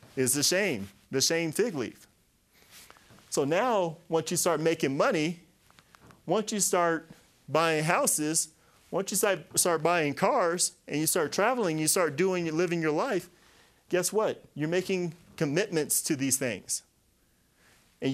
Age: 30-49